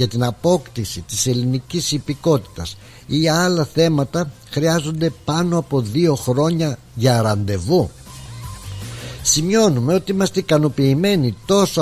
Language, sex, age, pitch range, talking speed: Greek, male, 60-79, 110-155 Hz, 105 wpm